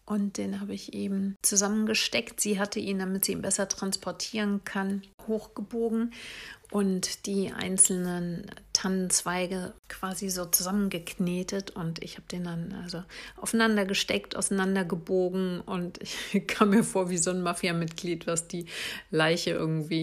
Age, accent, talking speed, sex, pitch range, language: 50-69, German, 140 wpm, female, 170-205 Hz, German